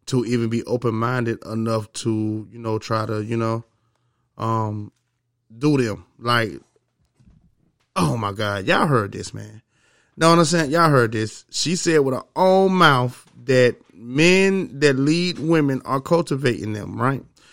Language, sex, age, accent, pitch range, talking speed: English, male, 20-39, American, 115-140 Hz, 145 wpm